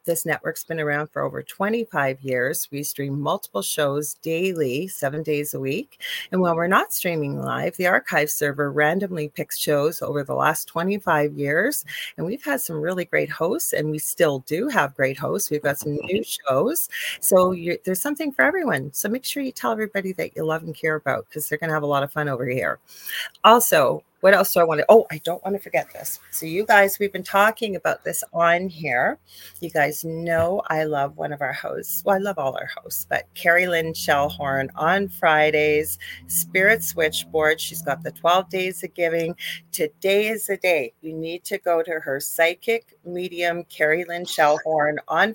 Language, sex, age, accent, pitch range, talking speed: English, female, 40-59, American, 150-190 Hz, 195 wpm